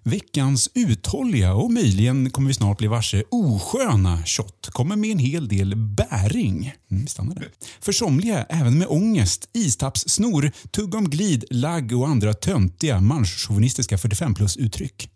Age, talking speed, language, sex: 30-49, 125 wpm, Swedish, male